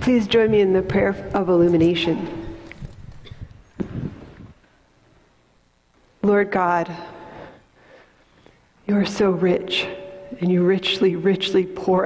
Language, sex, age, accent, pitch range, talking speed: English, female, 40-59, American, 170-195 Hz, 95 wpm